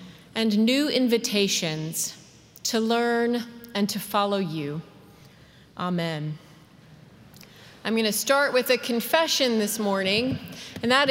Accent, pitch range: American, 210-255 Hz